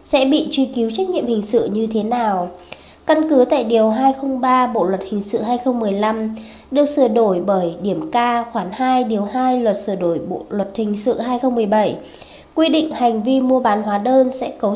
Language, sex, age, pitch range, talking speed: Vietnamese, female, 20-39, 215-275 Hz, 200 wpm